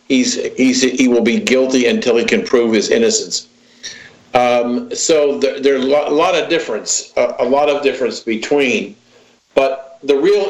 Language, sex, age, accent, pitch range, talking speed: English, male, 50-69, American, 125-155 Hz, 150 wpm